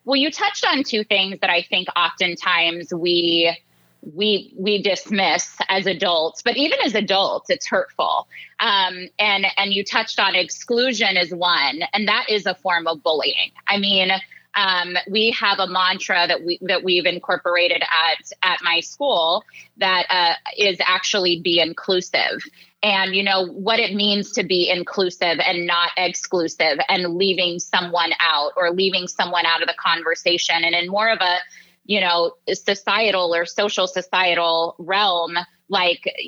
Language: English